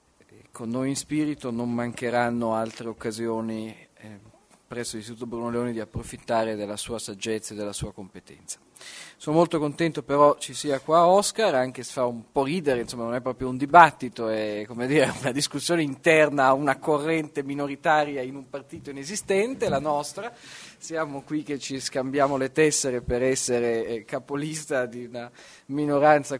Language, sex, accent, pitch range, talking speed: Italian, male, native, 110-145 Hz, 160 wpm